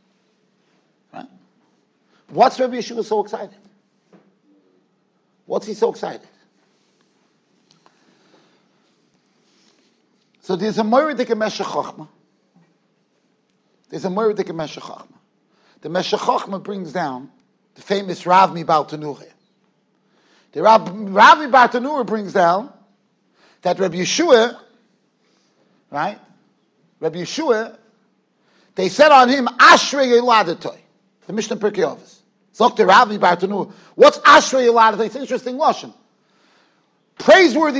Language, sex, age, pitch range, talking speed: English, male, 50-69, 205-290 Hz, 90 wpm